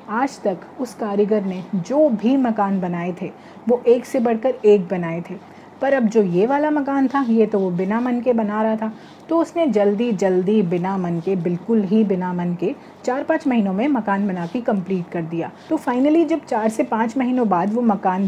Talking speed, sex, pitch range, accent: 215 wpm, female, 195-255 Hz, native